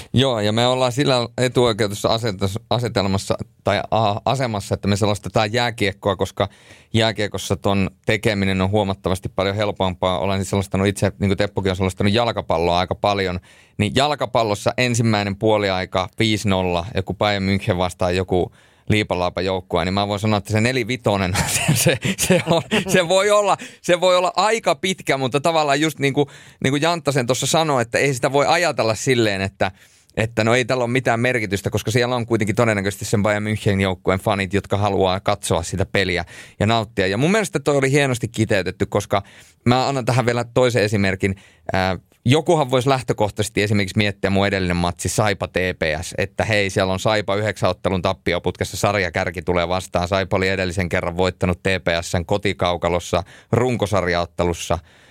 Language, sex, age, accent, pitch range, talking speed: Finnish, male, 30-49, native, 95-120 Hz, 155 wpm